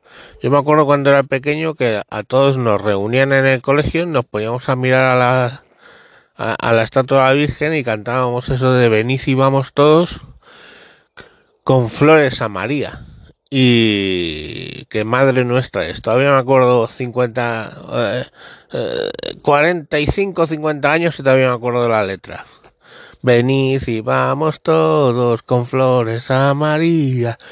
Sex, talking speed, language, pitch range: male, 150 wpm, Spanish, 115-150 Hz